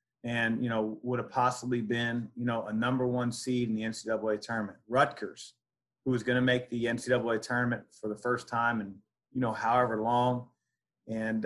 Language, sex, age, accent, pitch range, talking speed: English, male, 40-59, American, 115-130 Hz, 190 wpm